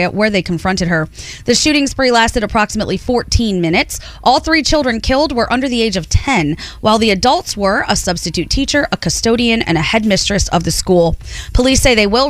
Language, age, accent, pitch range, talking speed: English, 20-39, American, 180-255 Hz, 195 wpm